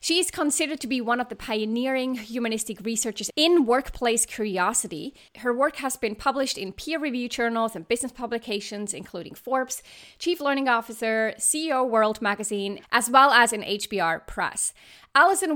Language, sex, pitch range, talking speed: English, female, 215-285 Hz, 155 wpm